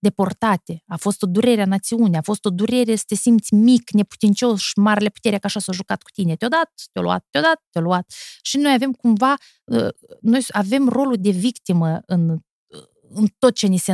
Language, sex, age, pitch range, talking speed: Romanian, female, 20-39, 180-230 Hz, 205 wpm